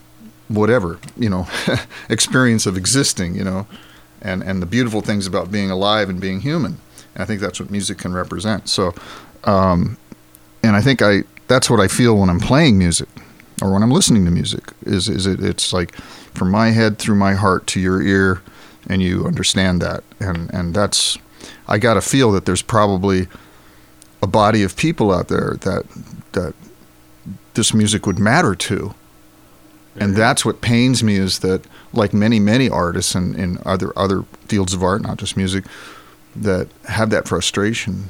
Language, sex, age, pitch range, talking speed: English, male, 40-59, 90-110 Hz, 180 wpm